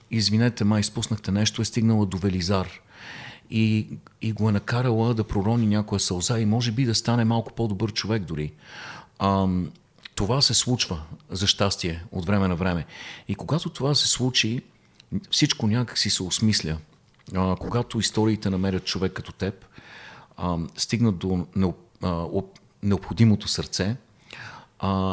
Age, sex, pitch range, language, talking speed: 50-69, male, 90-110 Hz, Bulgarian, 140 wpm